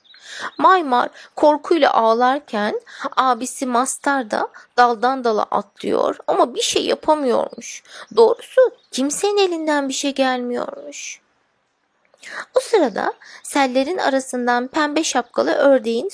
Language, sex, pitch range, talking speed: Turkish, female, 215-320 Hz, 95 wpm